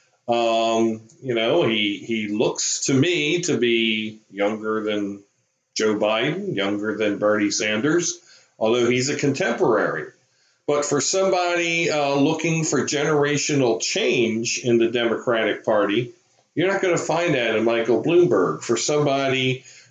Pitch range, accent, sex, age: 115-140 Hz, American, male, 40-59